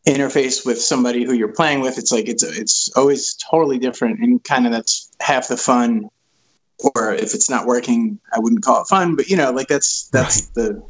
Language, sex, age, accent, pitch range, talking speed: English, male, 20-39, American, 120-160 Hz, 205 wpm